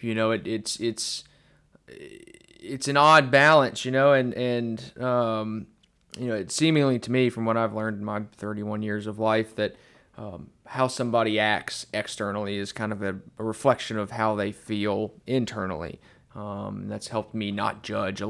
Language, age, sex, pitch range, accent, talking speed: English, 20-39, male, 105-125 Hz, American, 175 wpm